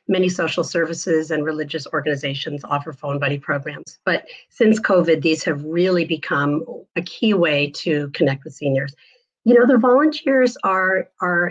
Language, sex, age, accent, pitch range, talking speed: English, female, 50-69, American, 170-215 Hz, 155 wpm